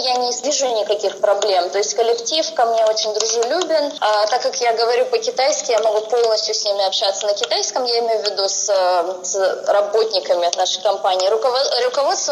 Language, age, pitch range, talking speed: Russian, 20-39, 205-260 Hz, 180 wpm